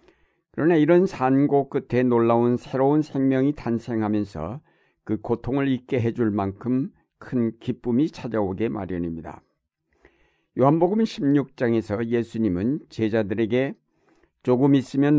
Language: Korean